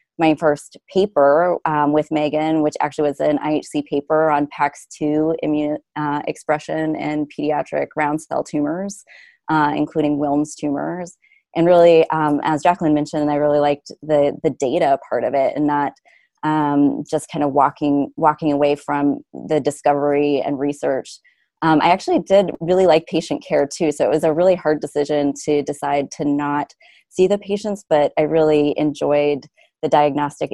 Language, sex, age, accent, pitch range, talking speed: English, female, 20-39, American, 145-170 Hz, 165 wpm